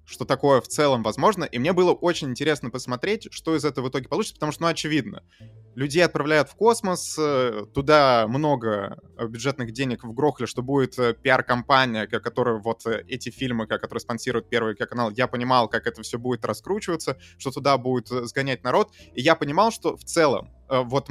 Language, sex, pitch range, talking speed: Russian, male, 120-155 Hz, 175 wpm